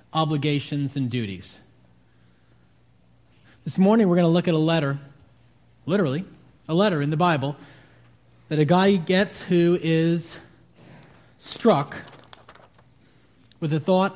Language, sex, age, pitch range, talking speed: English, male, 30-49, 155-205 Hz, 120 wpm